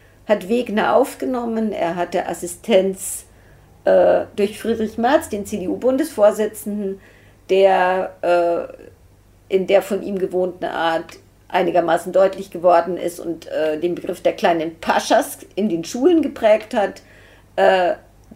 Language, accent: German, German